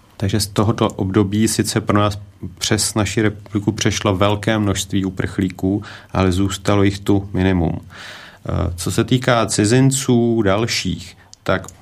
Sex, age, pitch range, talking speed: male, 30-49, 95-110 Hz, 125 wpm